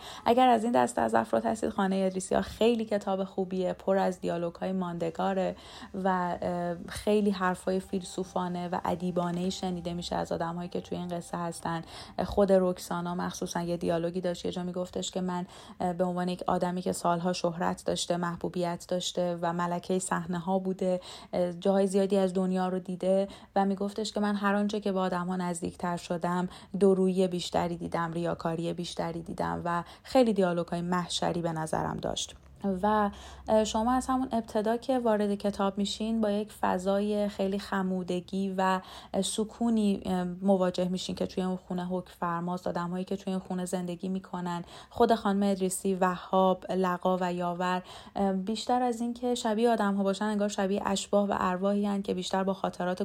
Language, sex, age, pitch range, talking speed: Persian, female, 30-49, 180-200 Hz, 160 wpm